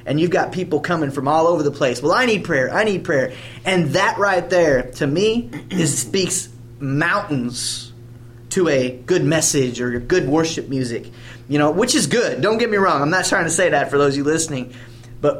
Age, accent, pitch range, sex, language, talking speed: 30-49, American, 125-180 Hz, male, English, 210 wpm